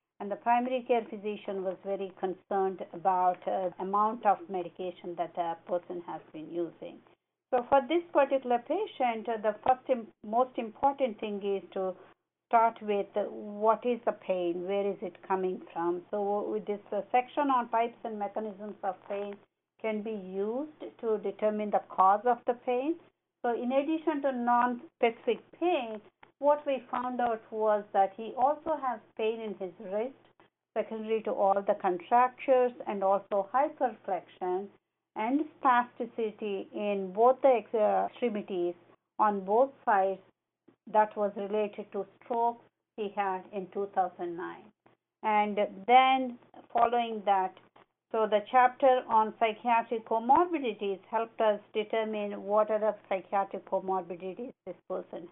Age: 60-79